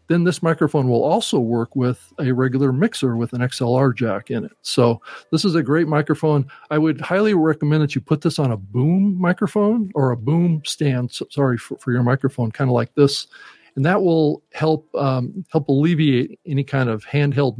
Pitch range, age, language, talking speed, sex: 120-155 Hz, 50-69, English, 200 wpm, male